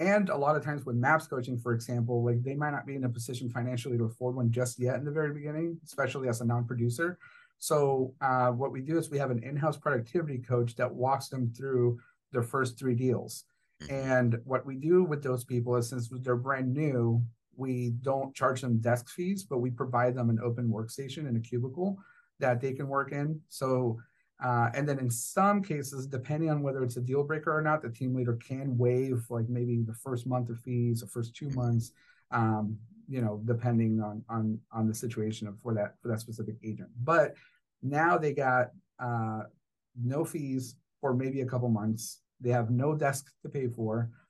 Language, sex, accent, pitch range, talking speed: English, male, American, 120-140 Hz, 205 wpm